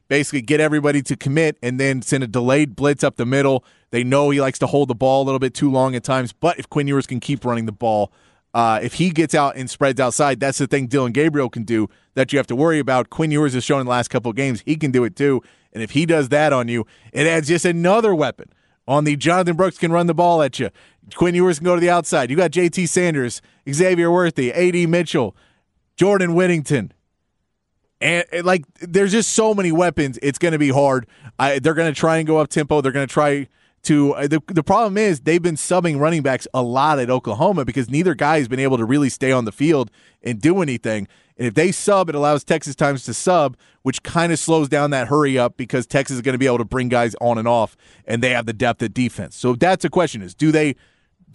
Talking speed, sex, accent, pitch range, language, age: 250 wpm, male, American, 125-160 Hz, English, 30-49